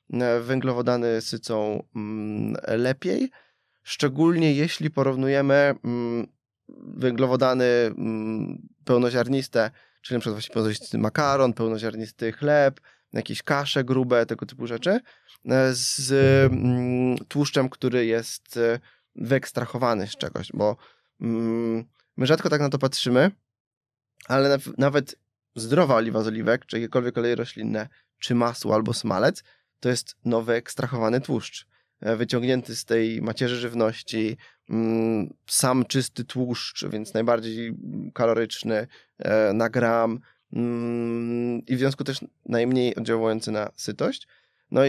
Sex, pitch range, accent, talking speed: male, 115-130 Hz, native, 105 wpm